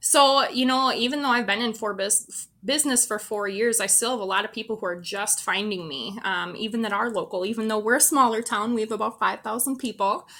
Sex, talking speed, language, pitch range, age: female, 230 wpm, English, 205-235 Hz, 20-39